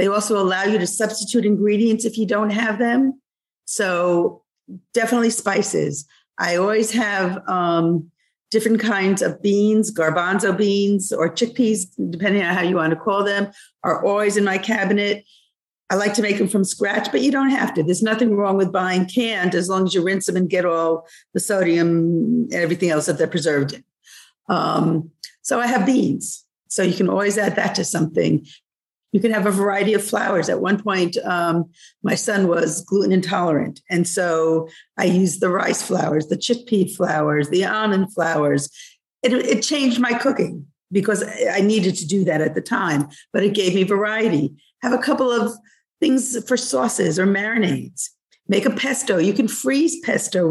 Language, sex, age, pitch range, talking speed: English, female, 50-69, 175-220 Hz, 180 wpm